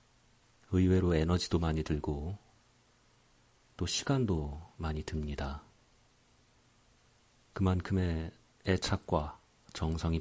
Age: 40-59